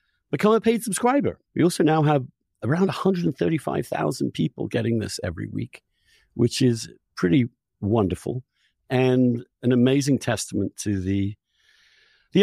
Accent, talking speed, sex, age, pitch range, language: British, 145 wpm, male, 50-69, 105-140 Hz, English